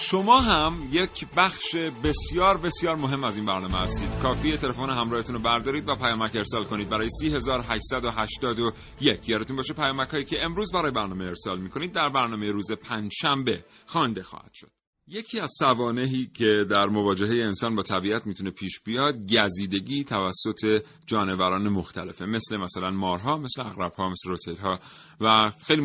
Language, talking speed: Persian, 160 wpm